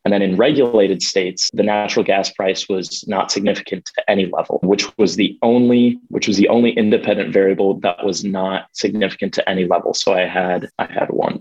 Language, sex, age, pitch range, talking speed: English, male, 20-39, 95-110 Hz, 200 wpm